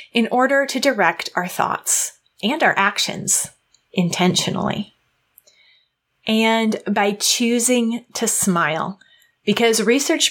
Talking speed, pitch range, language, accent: 100 wpm, 185-245 Hz, English, American